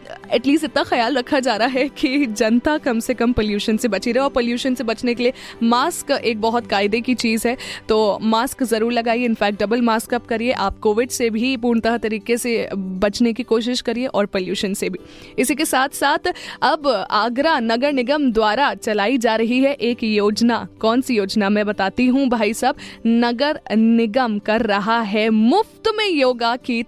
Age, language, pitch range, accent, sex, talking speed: 20-39, Hindi, 210-255 Hz, native, female, 185 wpm